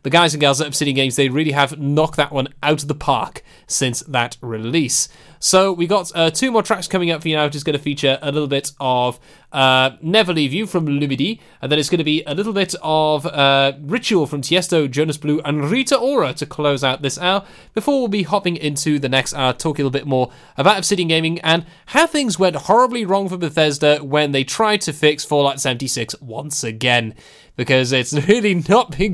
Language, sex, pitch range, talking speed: English, male, 135-185 Hz, 225 wpm